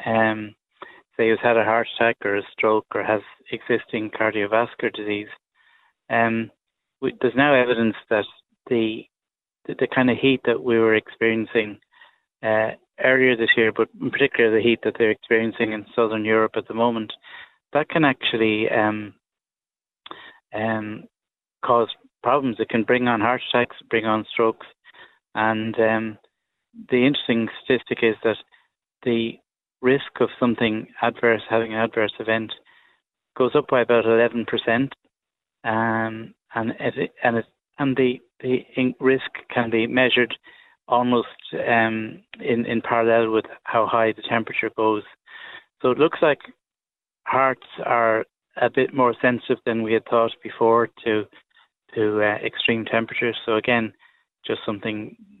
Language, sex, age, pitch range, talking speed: English, male, 30-49, 110-120 Hz, 145 wpm